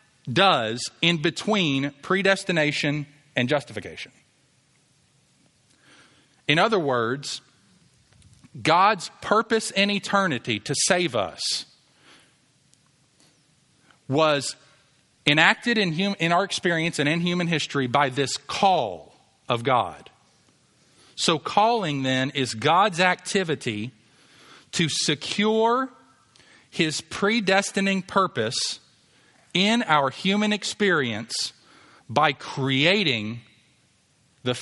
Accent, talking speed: American, 85 wpm